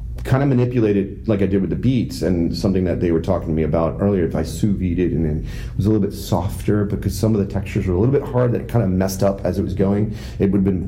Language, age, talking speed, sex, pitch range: English, 40-59, 305 wpm, male, 85-110 Hz